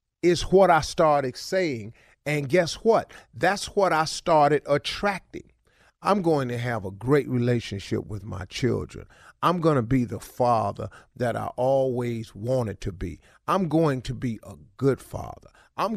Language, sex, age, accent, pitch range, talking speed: English, male, 40-59, American, 115-165 Hz, 160 wpm